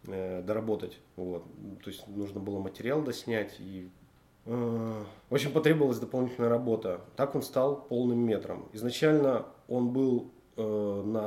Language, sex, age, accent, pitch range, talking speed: Russian, male, 30-49, native, 100-120 Hz, 115 wpm